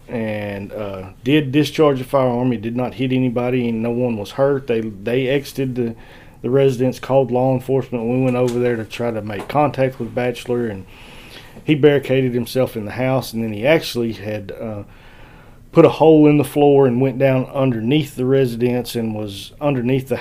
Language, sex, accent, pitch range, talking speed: English, male, American, 110-125 Hz, 195 wpm